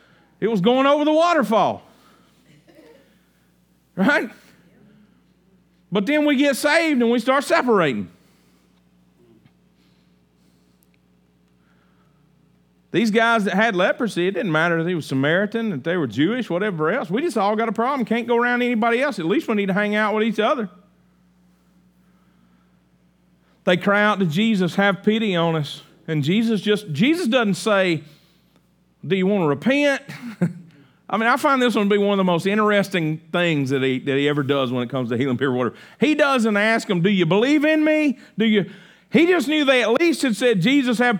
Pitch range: 155-230 Hz